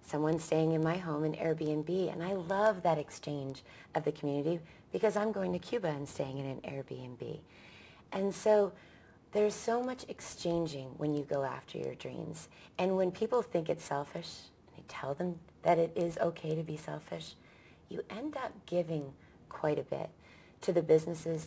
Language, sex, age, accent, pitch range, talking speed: English, female, 30-49, American, 140-175 Hz, 180 wpm